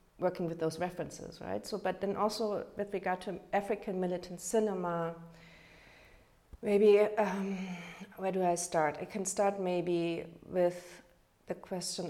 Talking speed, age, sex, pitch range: 140 wpm, 40-59, female, 165-195 Hz